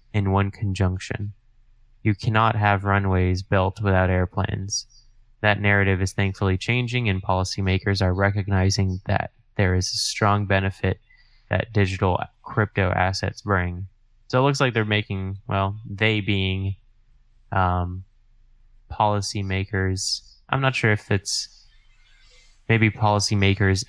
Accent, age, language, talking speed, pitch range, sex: American, 10-29, English, 120 wpm, 95-110 Hz, male